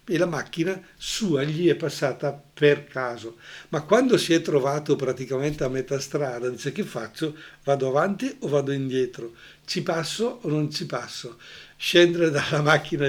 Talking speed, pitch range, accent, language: 160 wpm, 135-170 Hz, native, Italian